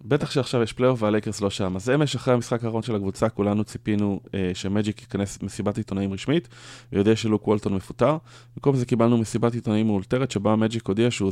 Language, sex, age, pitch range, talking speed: Hebrew, male, 20-39, 100-120 Hz, 190 wpm